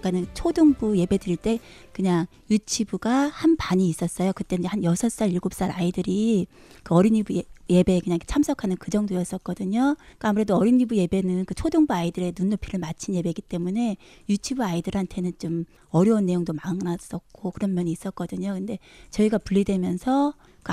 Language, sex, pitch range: Korean, female, 180-220 Hz